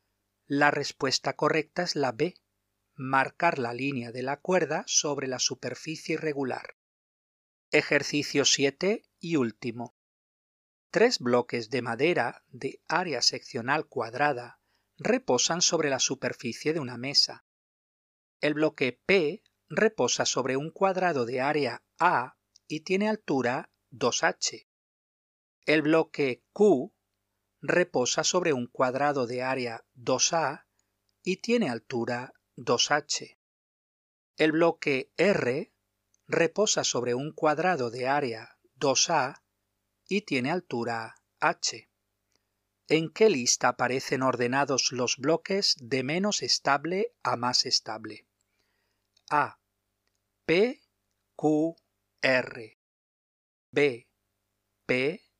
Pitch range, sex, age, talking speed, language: 115-155 Hz, male, 40-59, 105 wpm, Spanish